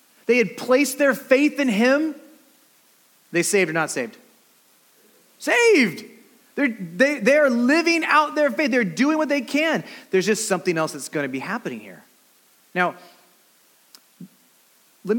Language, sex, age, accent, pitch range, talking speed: English, male, 30-49, American, 165-245 Hz, 140 wpm